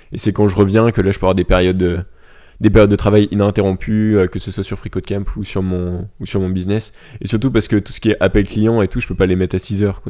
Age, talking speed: 20-39, 310 wpm